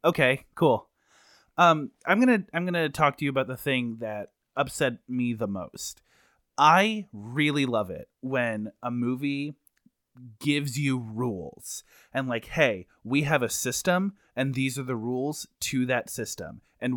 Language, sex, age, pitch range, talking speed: English, male, 30-49, 115-150 Hz, 165 wpm